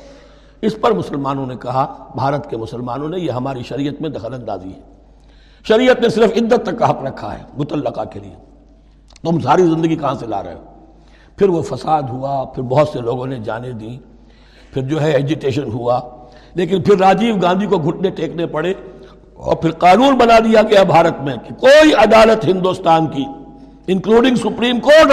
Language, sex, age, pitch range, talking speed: Urdu, male, 60-79, 135-200 Hz, 180 wpm